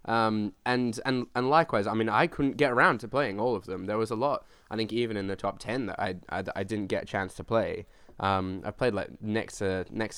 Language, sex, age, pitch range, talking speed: English, male, 10-29, 95-110 Hz, 260 wpm